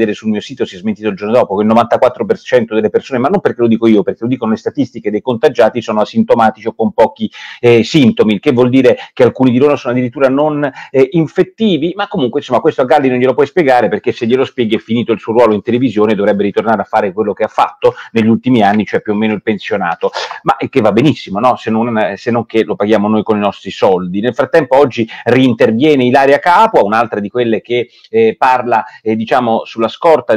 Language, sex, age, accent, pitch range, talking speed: Italian, male, 40-59, native, 110-140 Hz, 235 wpm